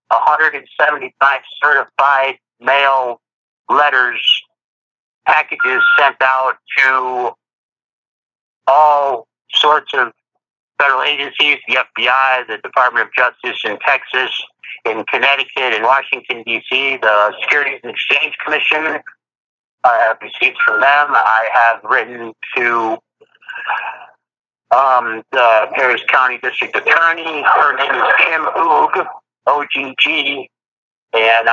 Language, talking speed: English, 100 wpm